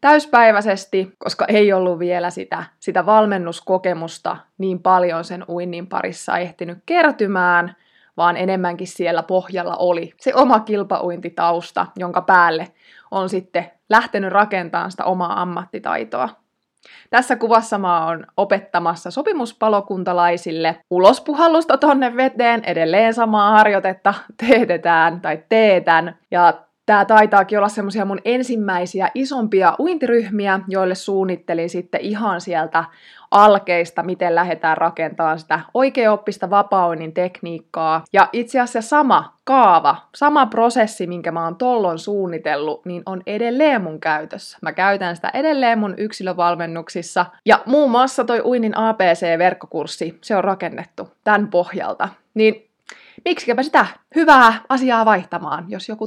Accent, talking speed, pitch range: native, 120 wpm, 175-230 Hz